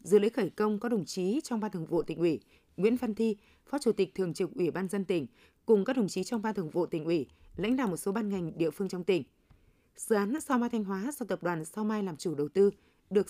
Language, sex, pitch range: Vietnamese, female, 185-235 Hz